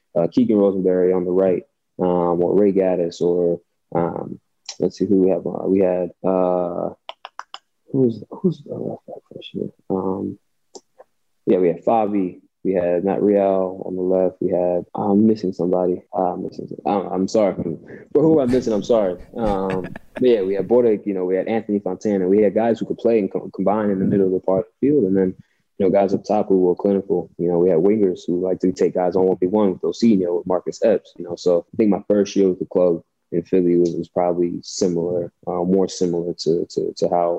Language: English